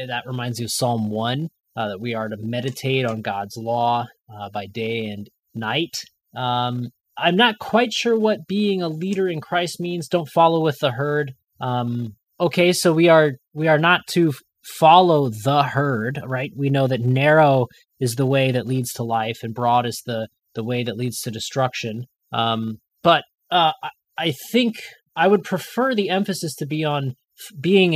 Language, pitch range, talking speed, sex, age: English, 120-165 Hz, 180 wpm, male, 20-39